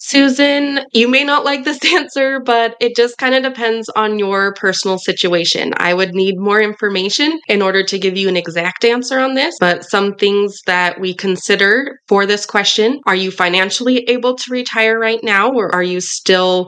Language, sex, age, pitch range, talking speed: English, female, 20-39, 175-225 Hz, 190 wpm